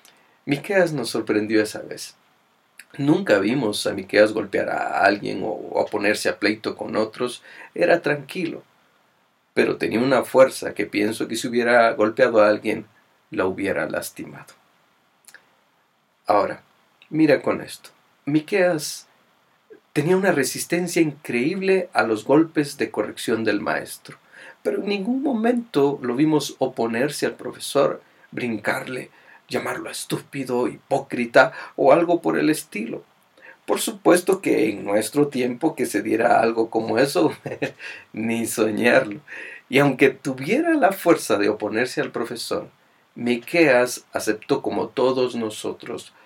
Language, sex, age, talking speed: Spanish, male, 40-59, 125 wpm